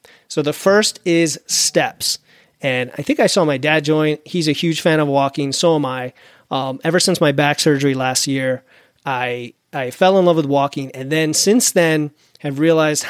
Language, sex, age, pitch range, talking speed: English, male, 30-49, 140-170 Hz, 195 wpm